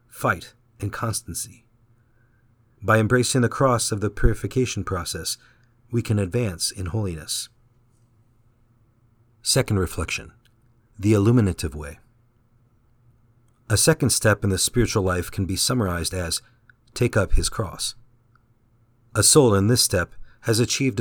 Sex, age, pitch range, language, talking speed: male, 50-69, 100-120 Hz, English, 125 wpm